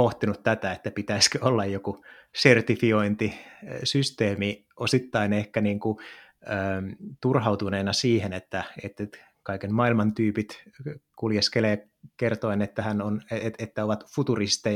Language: Finnish